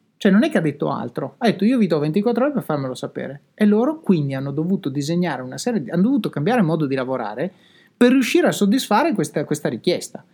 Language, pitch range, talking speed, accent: Italian, 160-220 Hz, 230 wpm, native